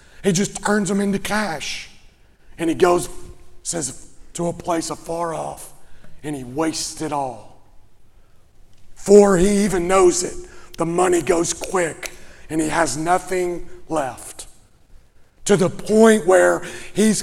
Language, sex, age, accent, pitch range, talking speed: English, male, 40-59, American, 155-200 Hz, 135 wpm